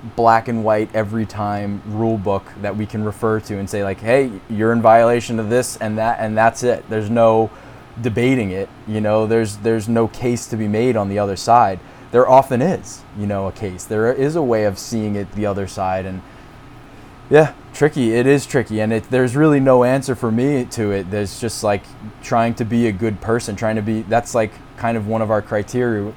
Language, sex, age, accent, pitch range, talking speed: English, male, 20-39, American, 105-120 Hz, 220 wpm